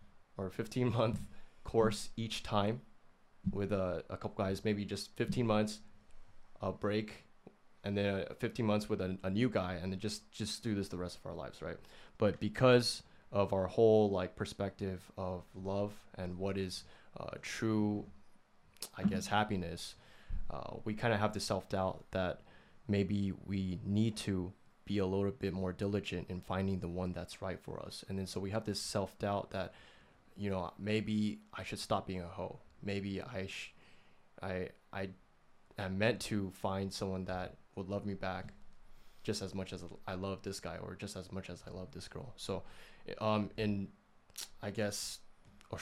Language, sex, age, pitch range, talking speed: English, male, 20-39, 95-105 Hz, 175 wpm